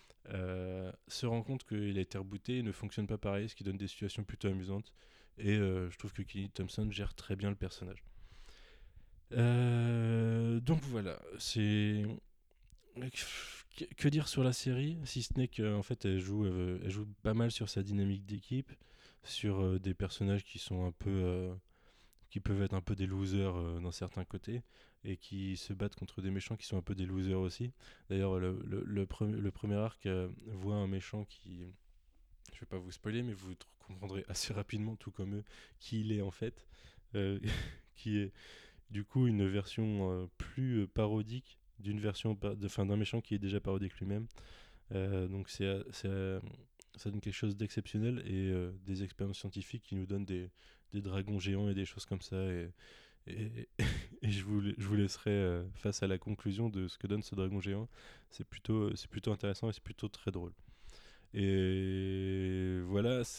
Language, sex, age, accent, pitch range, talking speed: French, male, 20-39, French, 95-110 Hz, 185 wpm